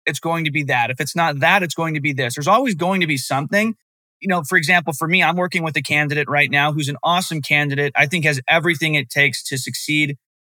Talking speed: 260 wpm